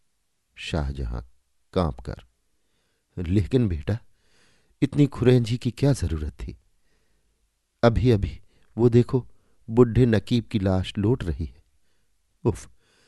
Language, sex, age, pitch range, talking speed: Hindi, male, 50-69, 80-120 Hz, 105 wpm